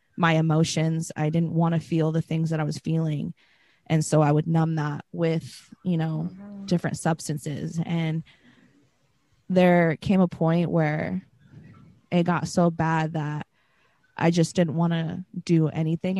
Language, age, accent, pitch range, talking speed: English, 20-39, American, 155-170 Hz, 155 wpm